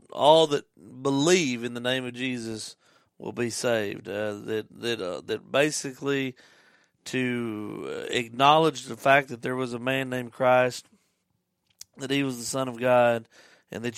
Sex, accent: male, American